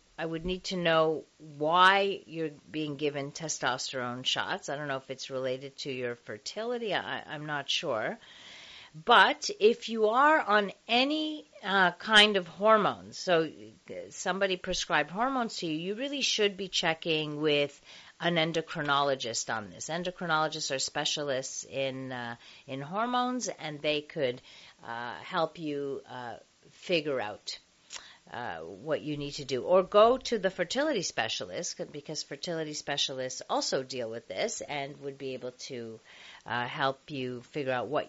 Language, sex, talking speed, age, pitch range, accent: English, female, 150 wpm, 40-59, 135-200 Hz, American